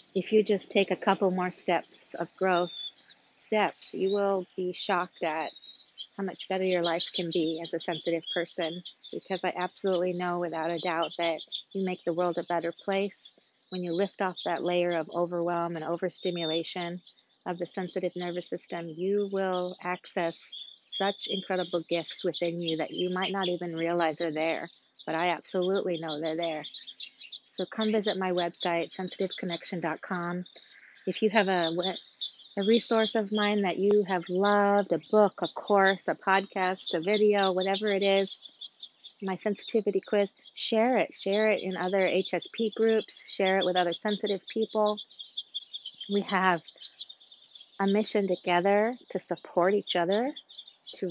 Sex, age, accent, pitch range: female, 40-59, American, 175-200 Hz